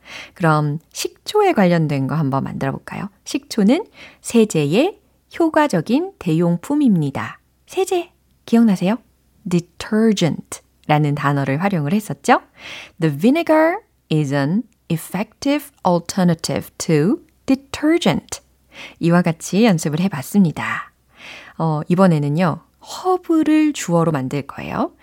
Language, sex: Korean, female